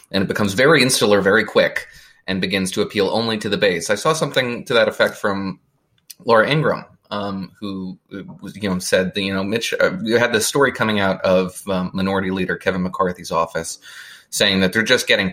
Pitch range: 95-115 Hz